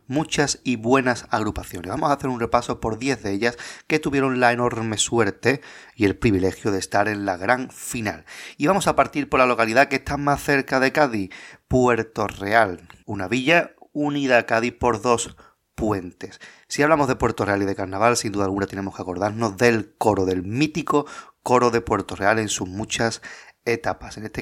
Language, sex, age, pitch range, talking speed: Spanish, male, 30-49, 100-130 Hz, 190 wpm